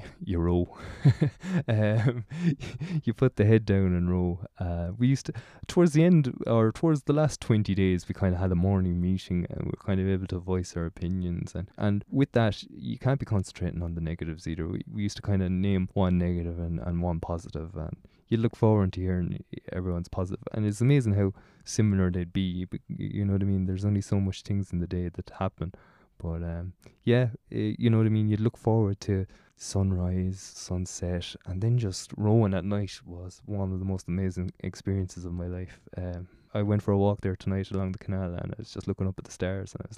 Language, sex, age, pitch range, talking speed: English, male, 20-39, 90-110 Hz, 225 wpm